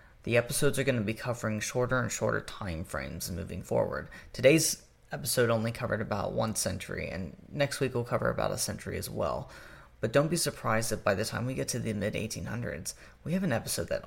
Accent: American